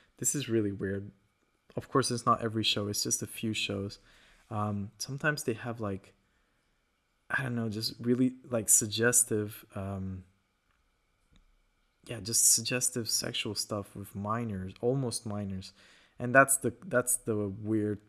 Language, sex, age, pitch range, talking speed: English, male, 20-39, 105-125 Hz, 145 wpm